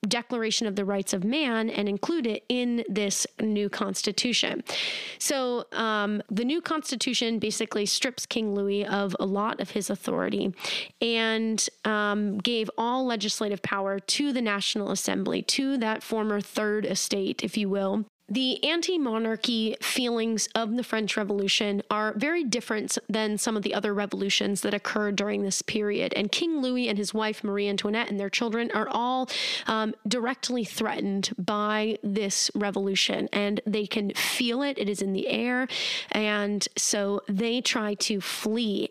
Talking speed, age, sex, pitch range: 155 wpm, 30-49, female, 205-240 Hz